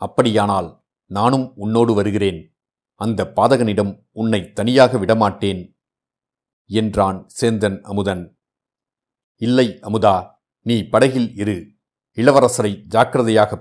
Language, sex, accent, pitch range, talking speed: Tamil, male, native, 100-120 Hz, 85 wpm